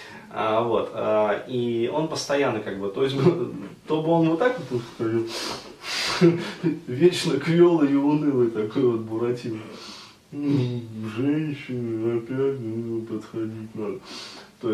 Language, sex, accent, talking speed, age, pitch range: Russian, male, native, 110 wpm, 20-39, 115-150 Hz